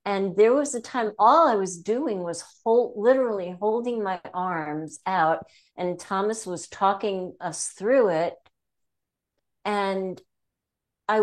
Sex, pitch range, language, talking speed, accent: female, 175-225 Hz, English, 135 wpm, American